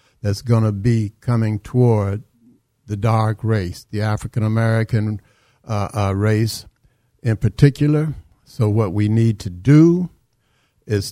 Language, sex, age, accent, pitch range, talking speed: English, male, 60-79, American, 110-135 Hz, 120 wpm